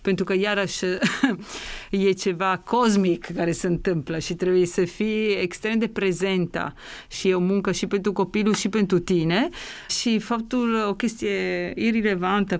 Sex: female